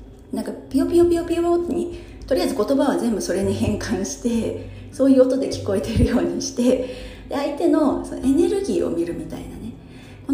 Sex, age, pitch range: female, 40-59, 185-310 Hz